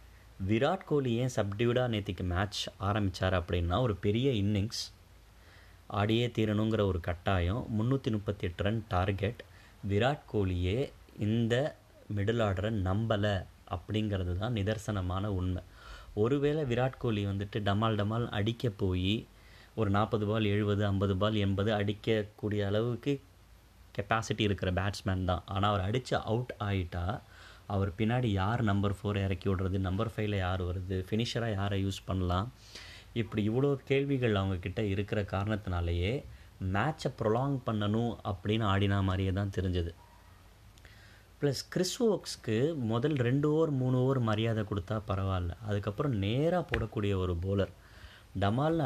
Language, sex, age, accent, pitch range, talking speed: Tamil, male, 20-39, native, 95-115 Hz, 120 wpm